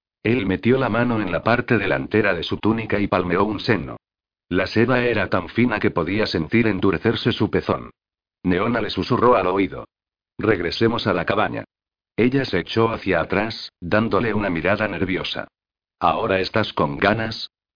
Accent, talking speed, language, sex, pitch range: Spanish, 160 wpm, Spanish, male, 95-115 Hz